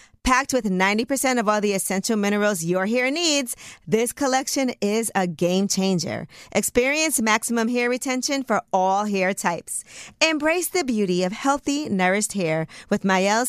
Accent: American